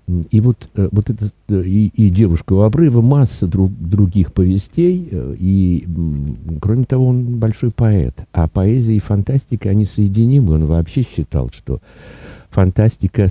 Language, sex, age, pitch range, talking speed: Russian, male, 50-69, 80-110 Hz, 135 wpm